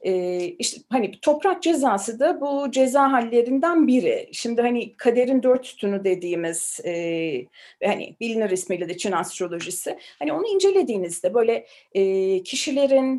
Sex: female